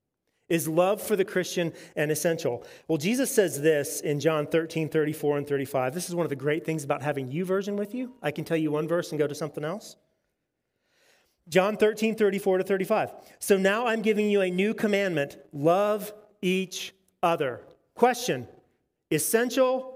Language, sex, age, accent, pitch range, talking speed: English, male, 40-59, American, 165-215 Hz, 175 wpm